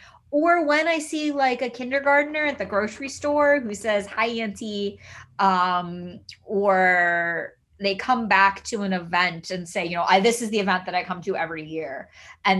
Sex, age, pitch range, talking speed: female, 20-39, 180-235 Hz, 185 wpm